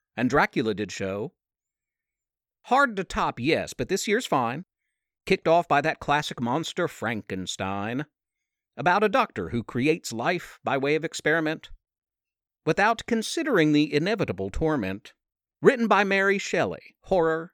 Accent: American